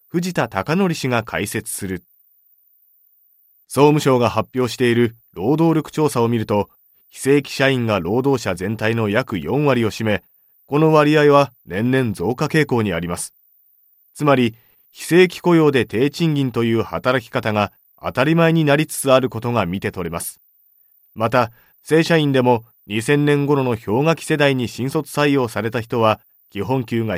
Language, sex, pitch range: Japanese, male, 110-145 Hz